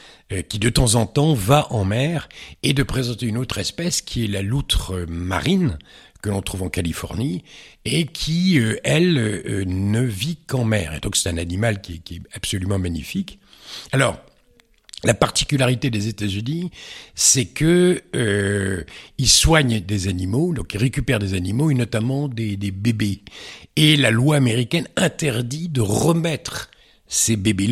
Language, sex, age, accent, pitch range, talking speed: French, male, 60-79, French, 95-140 Hz, 150 wpm